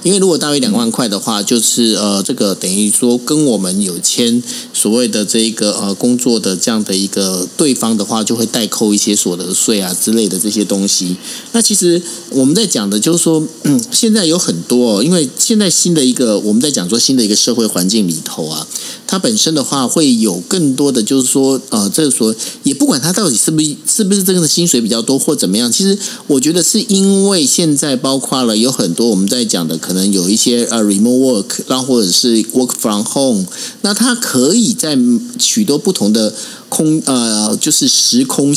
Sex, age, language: male, 50-69, Chinese